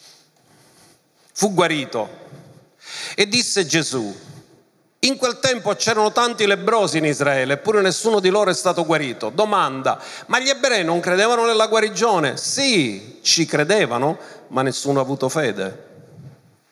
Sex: male